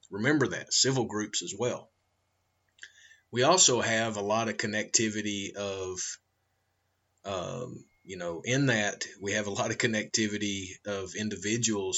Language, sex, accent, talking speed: English, male, American, 135 wpm